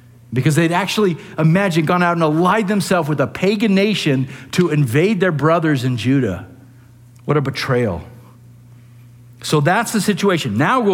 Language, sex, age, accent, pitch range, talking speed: English, male, 50-69, American, 120-170 Hz, 155 wpm